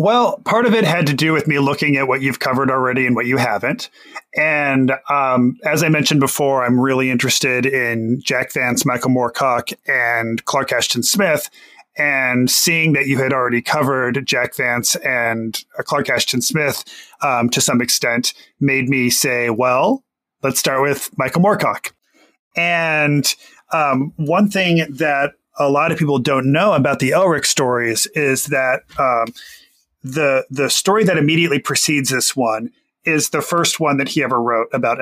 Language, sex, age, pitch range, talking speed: English, male, 30-49, 125-155 Hz, 170 wpm